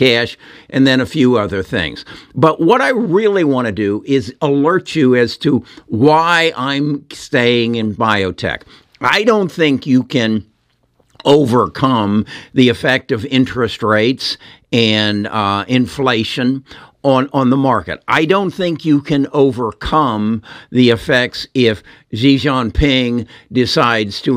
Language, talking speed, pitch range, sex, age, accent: English, 135 wpm, 110-140 Hz, male, 60-79, American